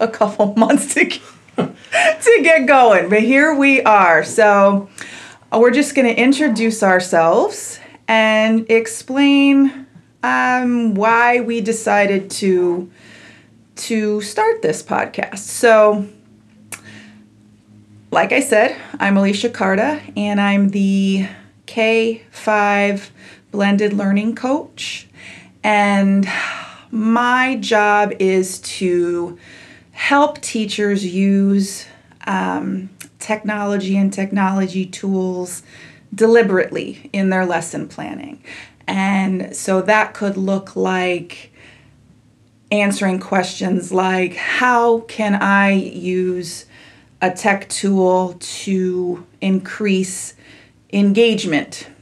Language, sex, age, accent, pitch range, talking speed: English, female, 30-49, American, 185-225 Hz, 90 wpm